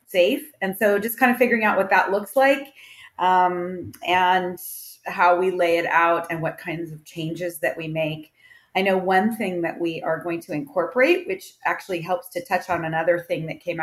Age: 30-49